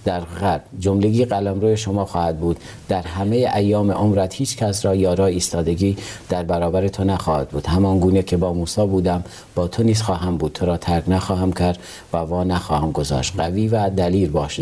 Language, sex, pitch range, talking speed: Persian, male, 90-110 Hz, 185 wpm